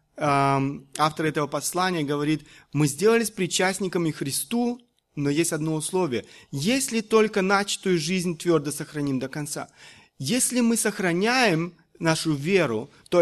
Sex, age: male, 30-49